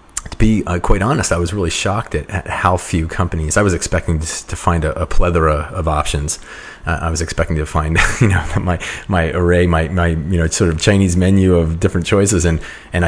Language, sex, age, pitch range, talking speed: English, male, 30-49, 80-95 Hz, 225 wpm